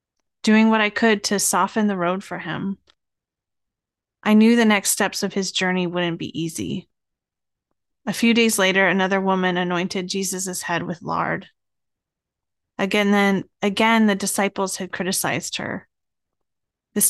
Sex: female